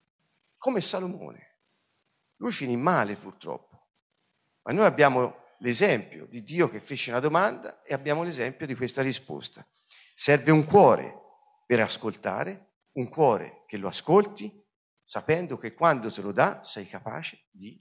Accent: native